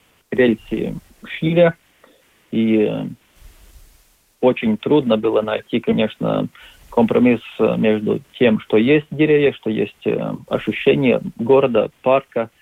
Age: 40-59